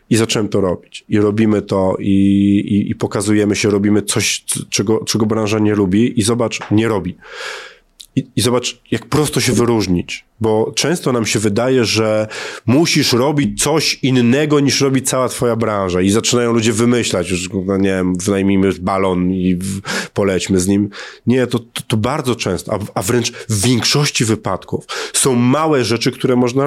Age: 30-49